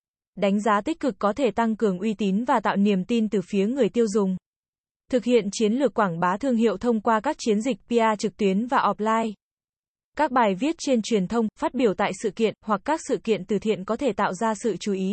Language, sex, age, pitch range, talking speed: Vietnamese, female, 20-39, 200-240 Hz, 240 wpm